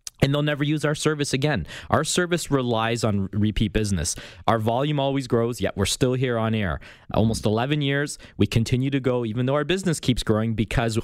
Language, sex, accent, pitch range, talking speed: English, male, American, 100-130 Hz, 200 wpm